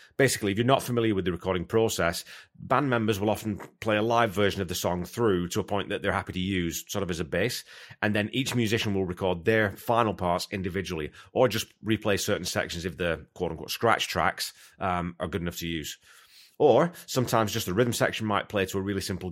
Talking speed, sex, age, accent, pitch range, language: 225 wpm, male, 30-49, British, 90-115 Hz, English